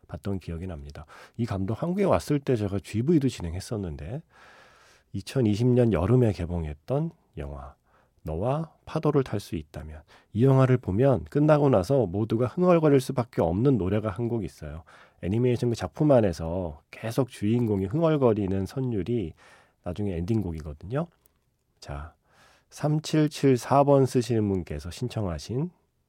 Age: 40-59